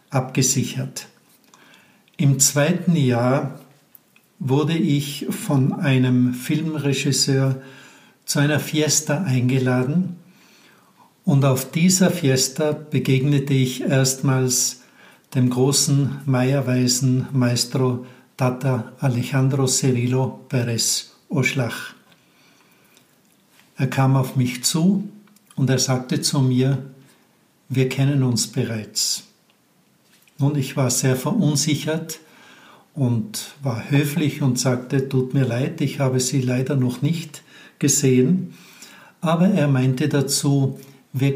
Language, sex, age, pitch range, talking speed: German, male, 60-79, 130-145 Hz, 100 wpm